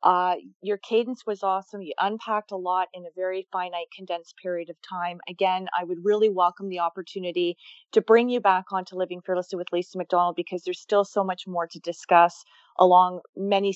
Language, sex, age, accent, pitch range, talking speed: English, female, 30-49, American, 175-195 Hz, 190 wpm